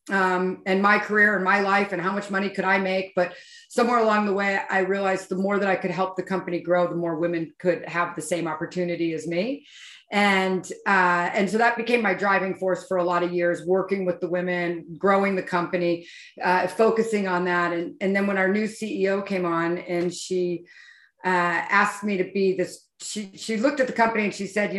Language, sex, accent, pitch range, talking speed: English, female, American, 175-205 Hz, 225 wpm